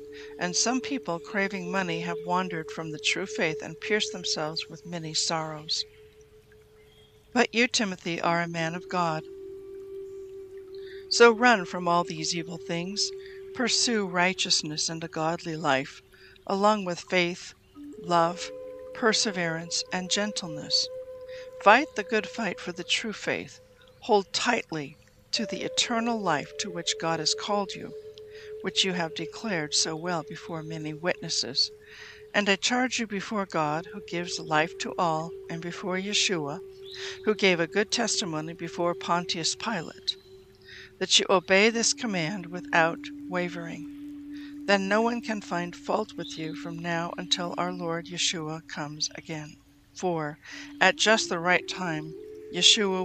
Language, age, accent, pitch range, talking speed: English, 60-79, American, 165-235 Hz, 145 wpm